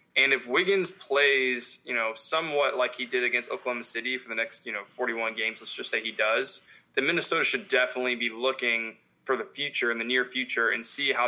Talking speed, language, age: 220 wpm, English, 20-39